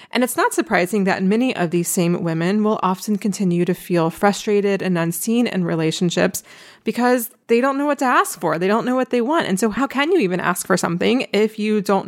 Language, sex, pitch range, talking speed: English, female, 180-220 Hz, 230 wpm